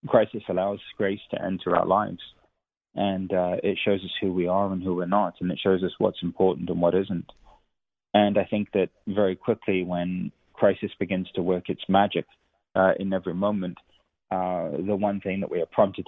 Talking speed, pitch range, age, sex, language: 200 wpm, 90-100 Hz, 20-39, male, English